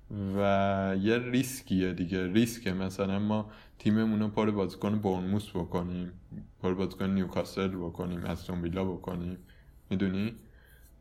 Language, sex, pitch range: Persian, male, 85-105 Hz